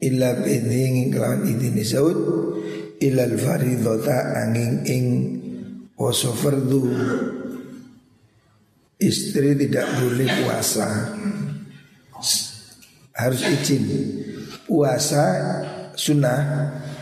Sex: male